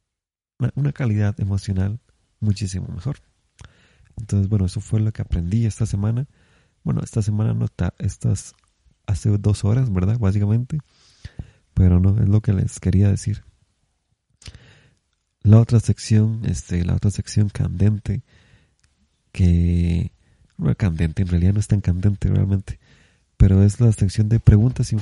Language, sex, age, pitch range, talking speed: Spanish, male, 30-49, 95-115 Hz, 145 wpm